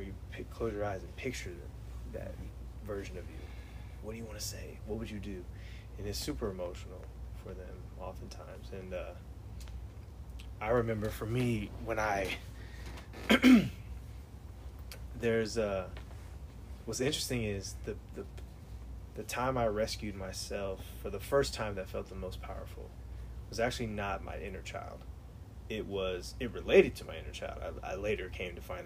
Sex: male